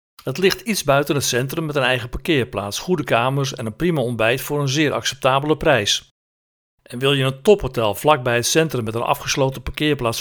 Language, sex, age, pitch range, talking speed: Dutch, male, 50-69, 120-160 Hz, 195 wpm